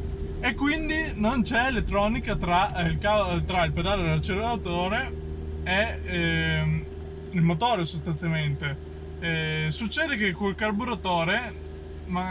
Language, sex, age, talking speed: Italian, male, 20-39, 115 wpm